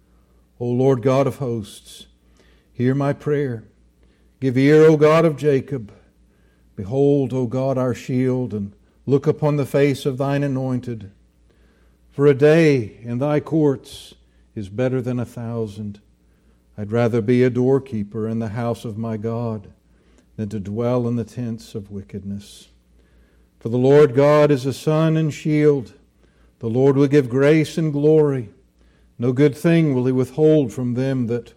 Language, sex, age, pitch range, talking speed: English, male, 60-79, 90-130 Hz, 155 wpm